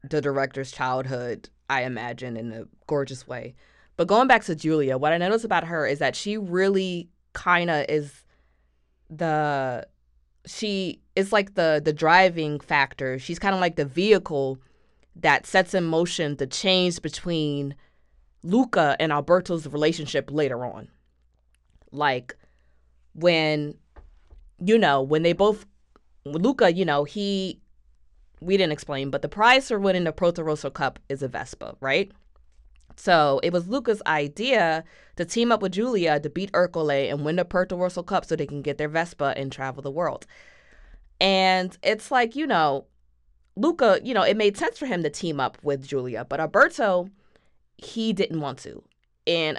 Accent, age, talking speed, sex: American, 20-39, 160 wpm, female